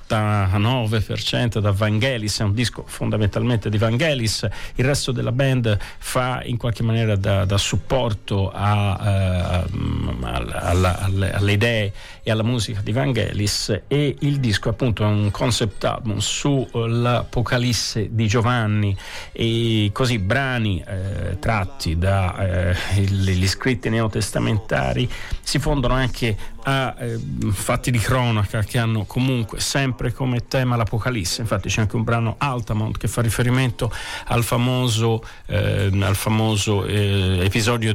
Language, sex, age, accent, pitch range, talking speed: Italian, male, 40-59, native, 100-120 Hz, 120 wpm